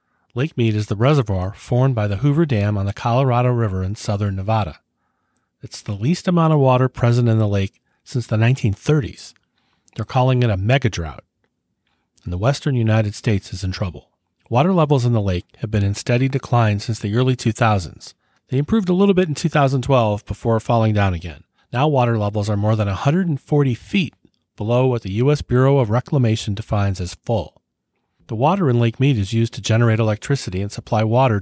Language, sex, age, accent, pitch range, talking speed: English, male, 40-59, American, 100-130 Hz, 190 wpm